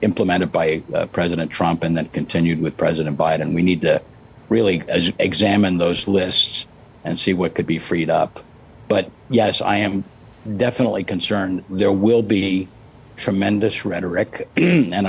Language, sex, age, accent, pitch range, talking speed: English, male, 50-69, American, 85-105 Hz, 145 wpm